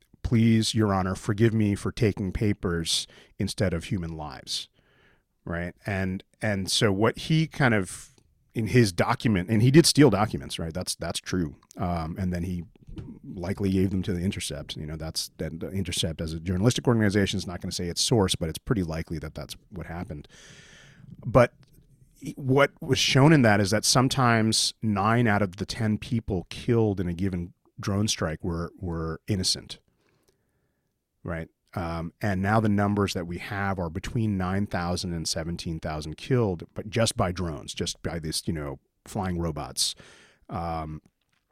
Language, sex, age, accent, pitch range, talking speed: English, male, 30-49, American, 85-115 Hz, 170 wpm